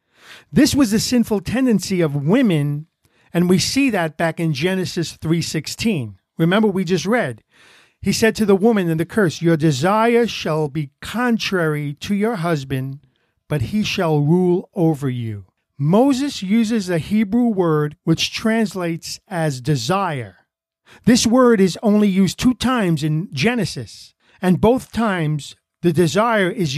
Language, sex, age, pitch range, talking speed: English, male, 50-69, 150-210 Hz, 145 wpm